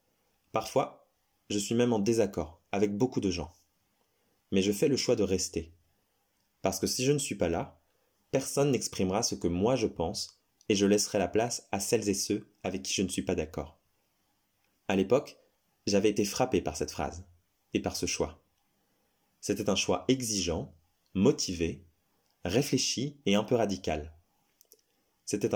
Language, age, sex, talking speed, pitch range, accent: French, 20-39, male, 165 wpm, 90-105 Hz, French